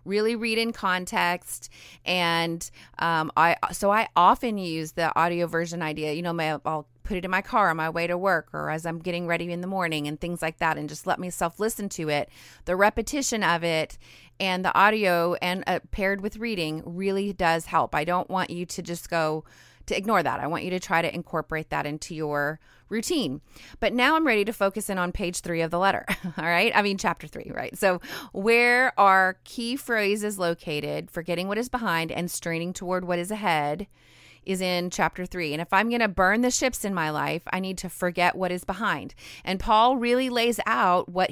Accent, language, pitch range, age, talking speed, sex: American, English, 170-205 Hz, 30-49, 215 wpm, female